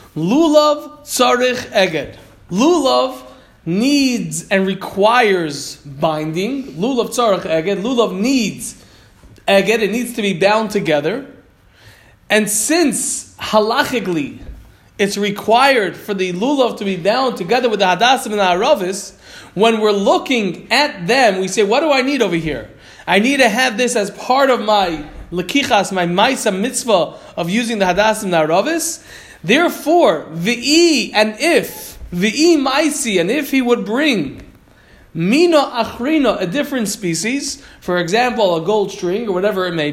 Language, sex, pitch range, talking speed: English, male, 190-255 Hz, 145 wpm